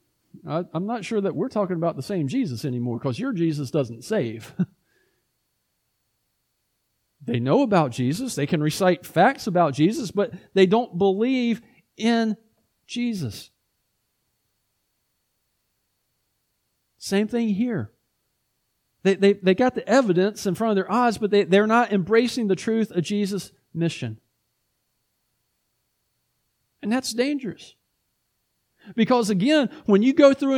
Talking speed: 125 wpm